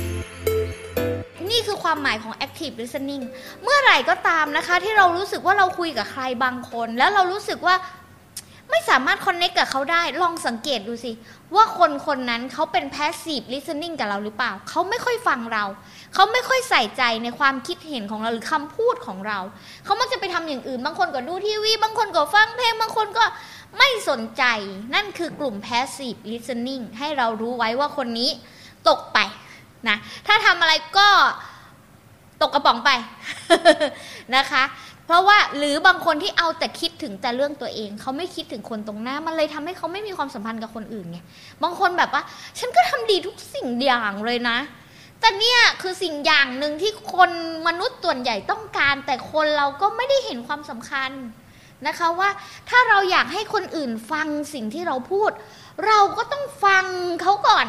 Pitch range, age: 250-375 Hz, 20-39